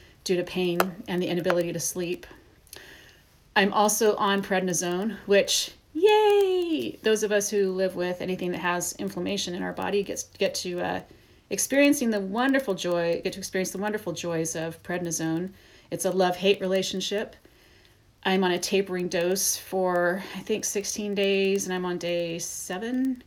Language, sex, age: English, female, 30-49